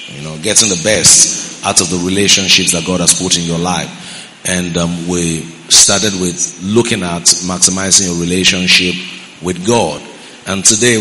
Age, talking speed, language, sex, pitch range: 30-49, 155 wpm, English, male, 90-110 Hz